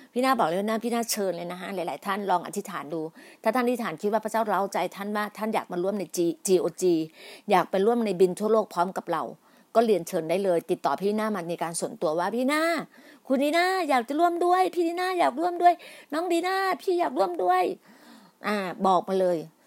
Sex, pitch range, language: female, 205-290 Hz, Thai